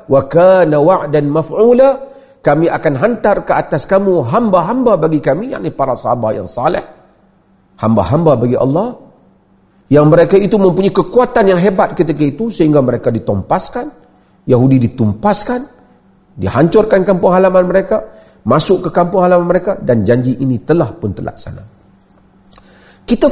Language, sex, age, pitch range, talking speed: Malay, male, 40-59, 110-185 Hz, 130 wpm